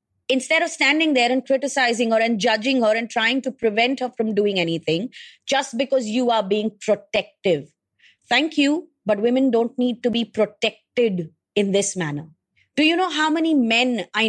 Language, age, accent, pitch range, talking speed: English, 30-49, Indian, 200-255 Hz, 180 wpm